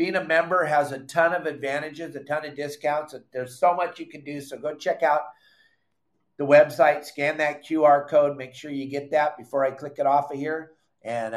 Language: English